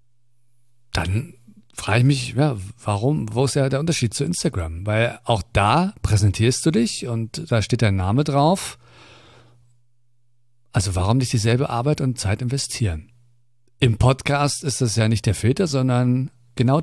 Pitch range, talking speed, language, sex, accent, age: 115-135 Hz, 150 wpm, German, male, German, 50-69